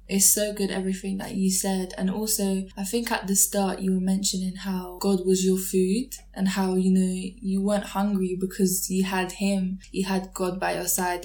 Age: 10-29